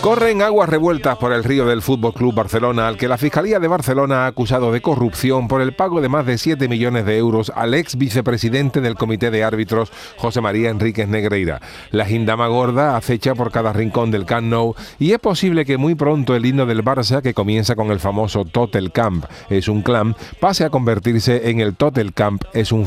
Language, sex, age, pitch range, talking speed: Spanish, male, 40-59, 115-145 Hz, 210 wpm